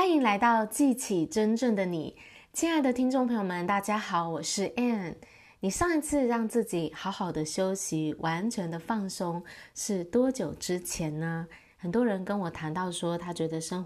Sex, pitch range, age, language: female, 165-215 Hz, 20-39, Chinese